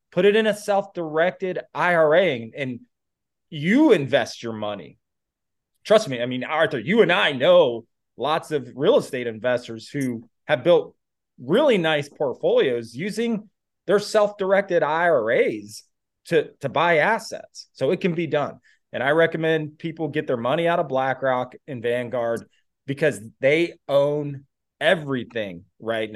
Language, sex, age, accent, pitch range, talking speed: English, male, 30-49, American, 125-180 Hz, 140 wpm